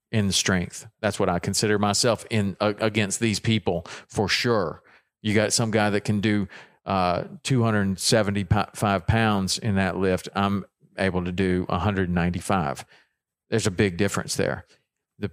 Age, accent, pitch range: 40-59, American, 100-130 Hz